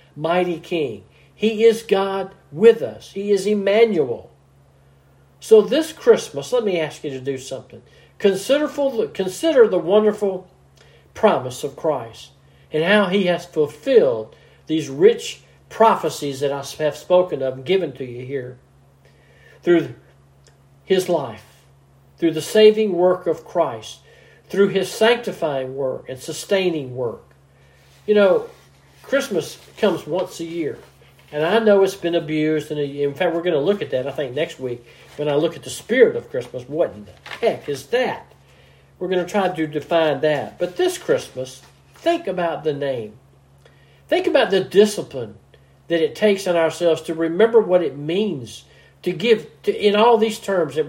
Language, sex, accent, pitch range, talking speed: English, male, American, 130-200 Hz, 160 wpm